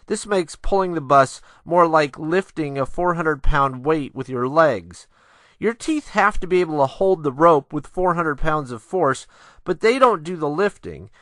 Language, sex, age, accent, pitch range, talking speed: English, male, 40-59, American, 140-185 Hz, 195 wpm